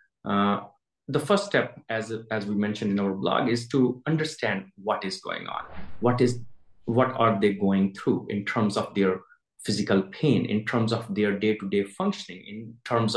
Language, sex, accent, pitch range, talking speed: English, male, Indian, 100-120 Hz, 180 wpm